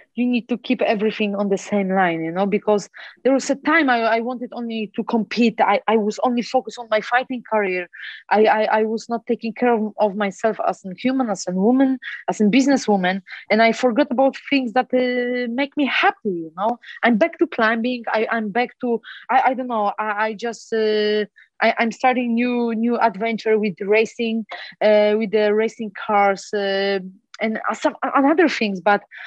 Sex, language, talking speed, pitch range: female, German, 200 wpm, 210-255 Hz